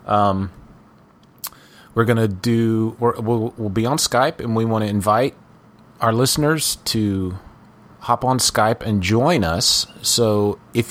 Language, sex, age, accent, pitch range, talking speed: English, male, 30-49, American, 95-115 Hz, 150 wpm